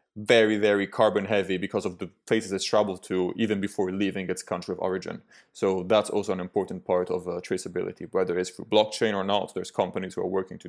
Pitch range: 90-105 Hz